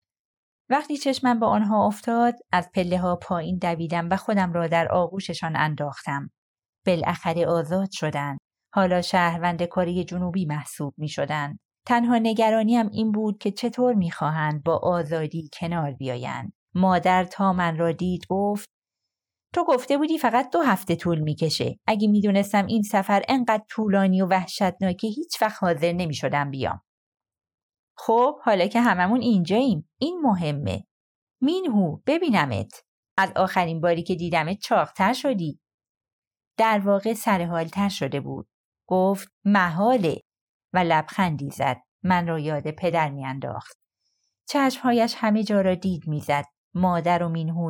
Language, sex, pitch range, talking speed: Persian, female, 155-205 Hz, 135 wpm